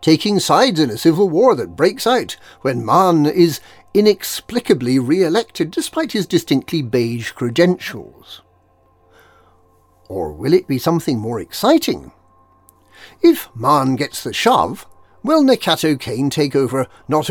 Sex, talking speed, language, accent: male, 130 wpm, English, British